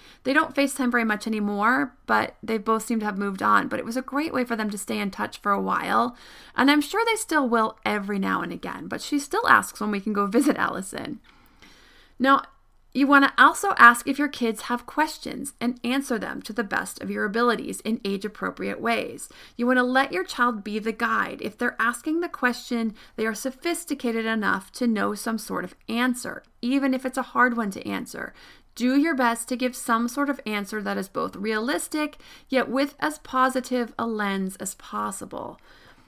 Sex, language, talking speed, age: female, English, 205 wpm, 30-49